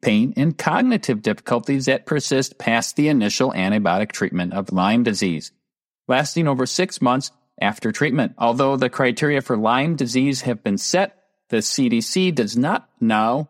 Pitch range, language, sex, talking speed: 115-160 Hz, English, male, 150 wpm